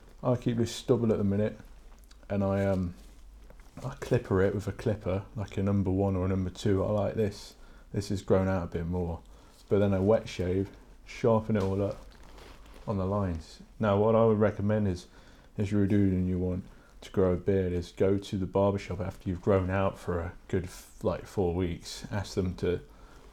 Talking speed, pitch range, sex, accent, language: 205 wpm, 90-100 Hz, male, British, English